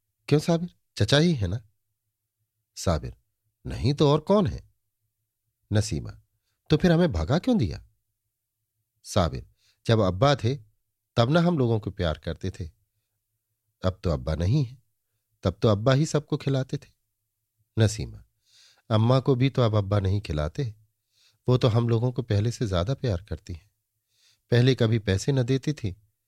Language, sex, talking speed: Hindi, male, 160 wpm